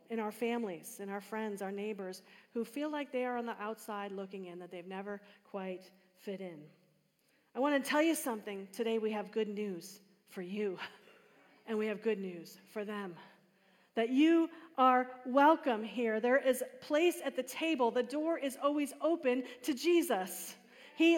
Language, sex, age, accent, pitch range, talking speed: English, female, 40-59, American, 200-280 Hz, 180 wpm